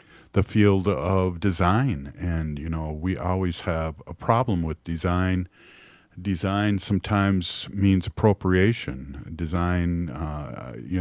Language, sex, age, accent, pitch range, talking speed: English, male, 50-69, American, 80-100 Hz, 115 wpm